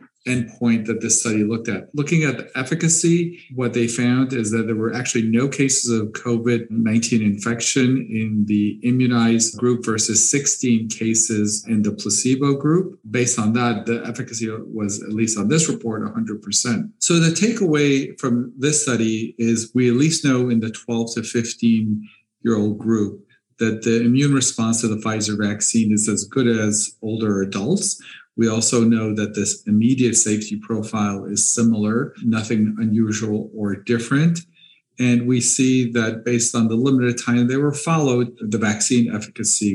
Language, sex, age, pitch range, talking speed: English, male, 40-59, 110-125 Hz, 165 wpm